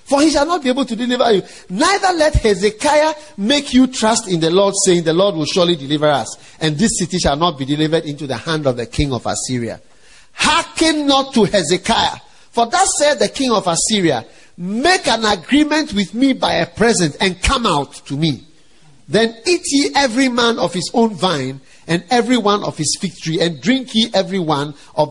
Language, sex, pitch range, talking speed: English, male, 155-230 Hz, 205 wpm